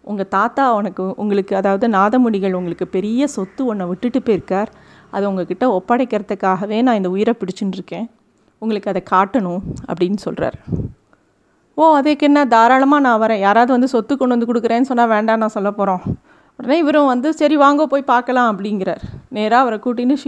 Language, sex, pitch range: Tamil, female, 195-245 Hz